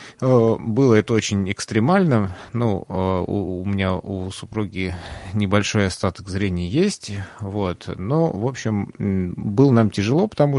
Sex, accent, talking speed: male, native, 125 wpm